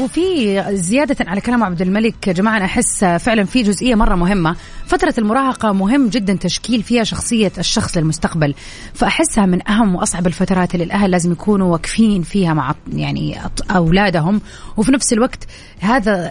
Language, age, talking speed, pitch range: Arabic, 30-49, 145 wpm, 175-230 Hz